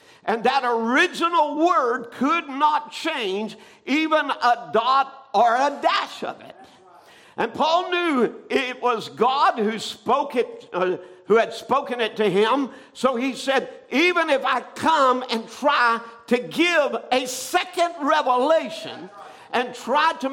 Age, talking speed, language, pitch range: 50-69, 140 wpm, English, 240-315 Hz